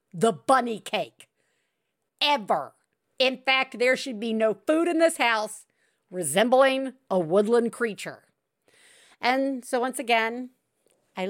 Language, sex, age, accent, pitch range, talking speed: English, female, 50-69, American, 200-290 Hz, 120 wpm